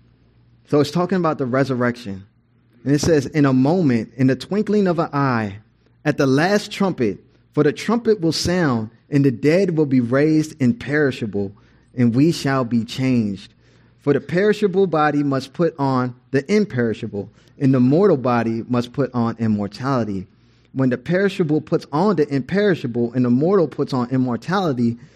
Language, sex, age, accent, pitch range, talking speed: English, male, 30-49, American, 120-150 Hz, 165 wpm